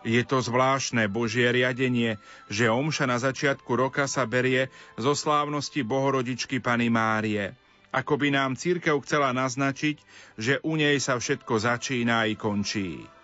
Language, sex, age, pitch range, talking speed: Slovak, male, 40-59, 120-145 Hz, 140 wpm